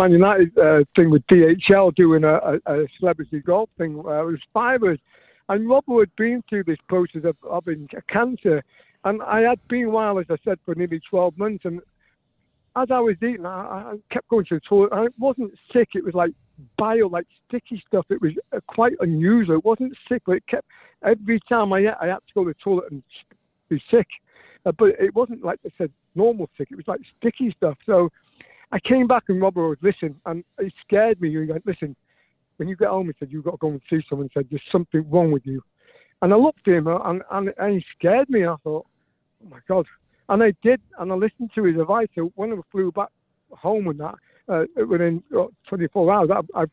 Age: 60-79